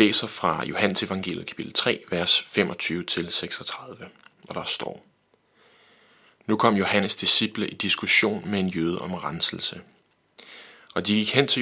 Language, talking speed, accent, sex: Danish, 145 wpm, native, male